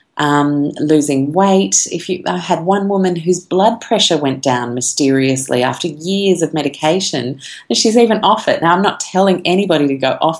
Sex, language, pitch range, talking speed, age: female, English, 135-170 Hz, 185 wpm, 30-49